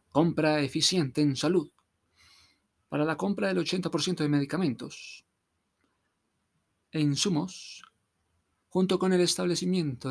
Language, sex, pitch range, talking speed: Spanish, male, 115-155 Hz, 100 wpm